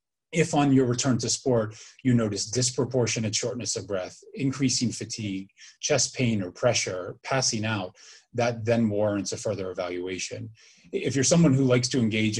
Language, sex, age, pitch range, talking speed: English, male, 30-49, 100-125 Hz, 160 wpm